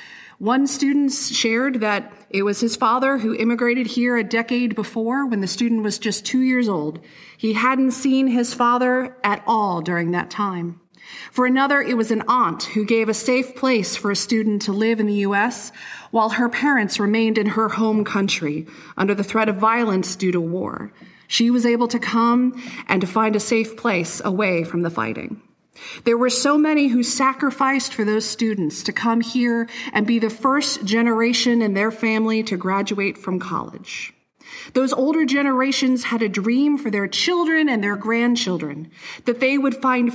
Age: 30-49